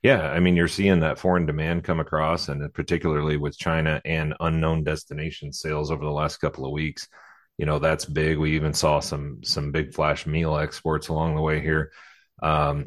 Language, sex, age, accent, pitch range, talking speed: English, male, 30-49, American, 75-85 Hz, 195 wpm